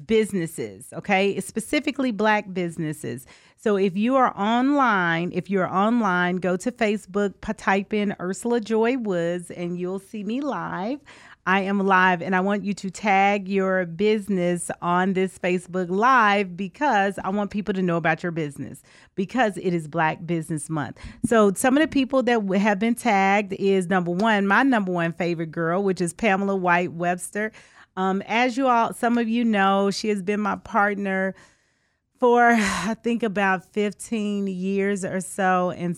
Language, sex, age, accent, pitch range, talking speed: English, female, 40-59, American, 175-215 Hz, 165 wpm